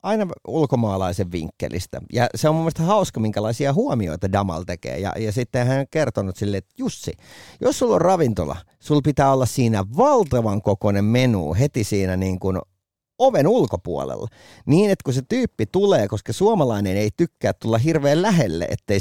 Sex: male